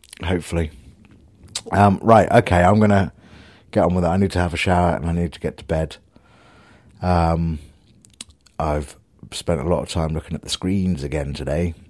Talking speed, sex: 185 wpm, male